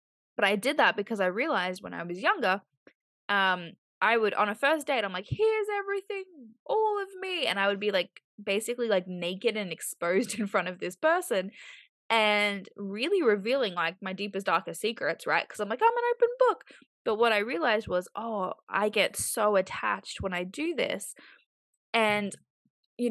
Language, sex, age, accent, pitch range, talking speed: English, female, 10-29, Australian, 190-285 Hz, 185 wpm